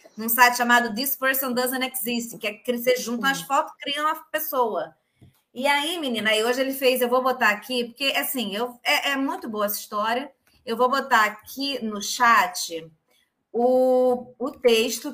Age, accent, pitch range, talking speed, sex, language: 20-39, Brazilian, 235-285 Hz, 180 wpm, female, Portuguese